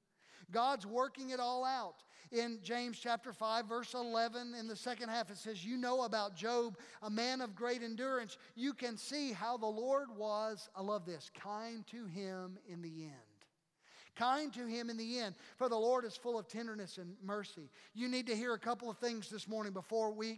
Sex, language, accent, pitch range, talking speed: male, English, American, 210-245 Hz, 205 wpm